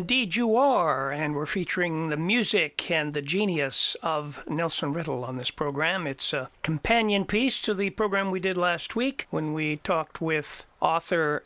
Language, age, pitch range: English, 50-69, 150-215 Hz